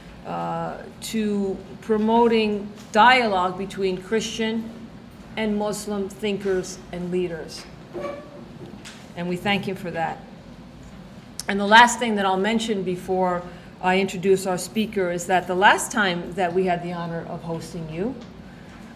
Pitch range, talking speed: 180-215 Hz, 140 wpm